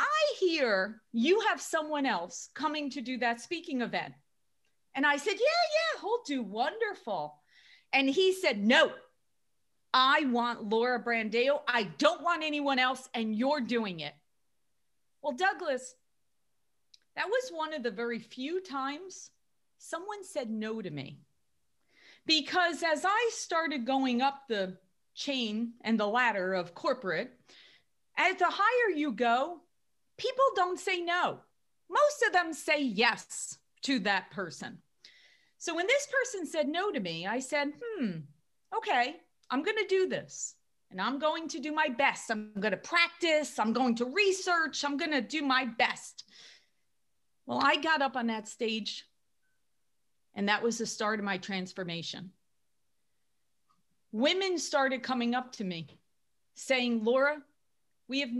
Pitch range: 225-320 Hz